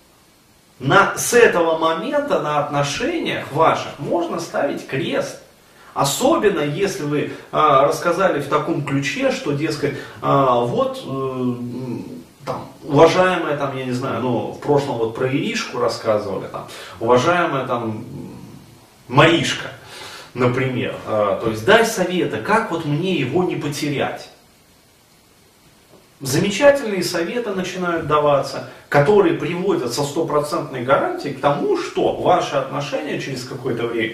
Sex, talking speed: male, 120 wpm